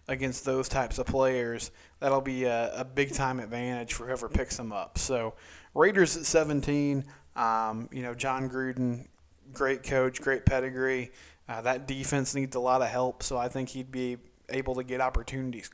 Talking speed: 175 wpm